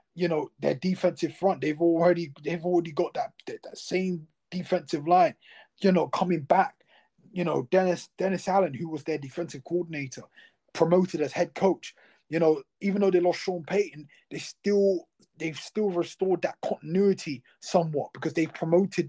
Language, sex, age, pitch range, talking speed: English, male, 20-39, 150-185 Hz, 165 wpm